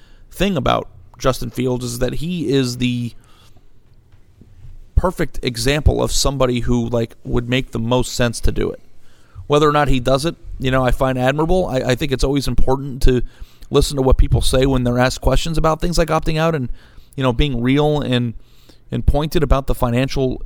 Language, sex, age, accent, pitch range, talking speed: English, male, 30-49, American, 120-135 Hz, 195 wpm